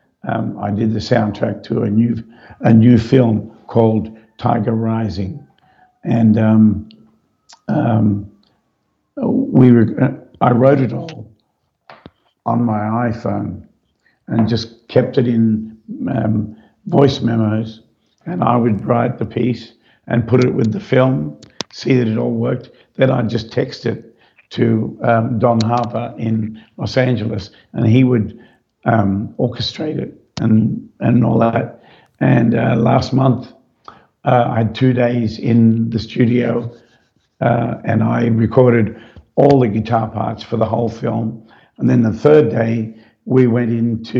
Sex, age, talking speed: male, 50-69, 145 wpm